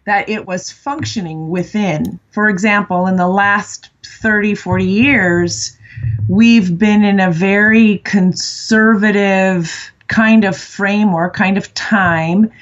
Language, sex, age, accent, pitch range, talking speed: English, female, 30-49, American, 165-205 Hz, 120 wpm